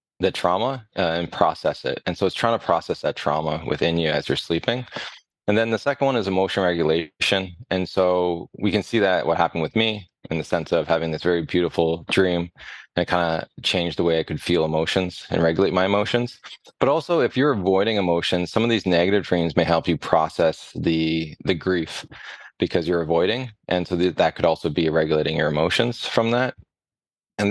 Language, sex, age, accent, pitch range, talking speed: English, male, 20-39, American, 85-110 Hz, 205 wpm